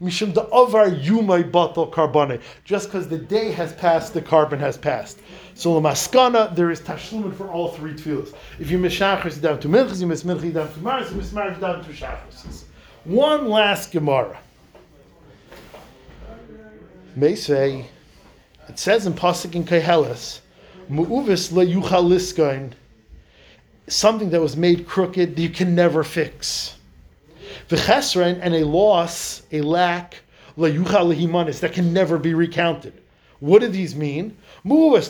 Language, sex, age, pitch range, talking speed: English, male, 50-69, 160-195 Hz, 140 wpm